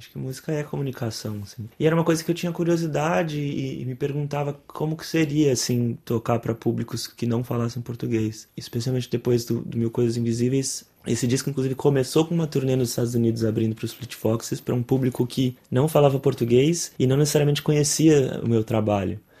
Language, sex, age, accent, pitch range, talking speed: Portuguese, male, 20-39, Brazilian, 115-145 Hz, 200 wpm